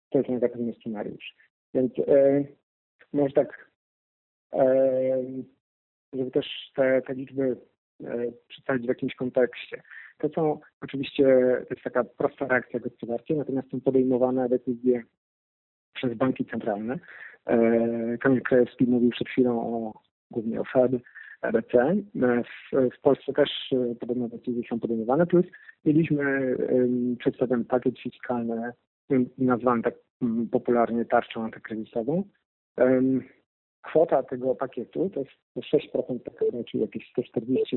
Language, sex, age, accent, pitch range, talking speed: Polish, male, 40-59, native, 120-135 Hz, 120 wpm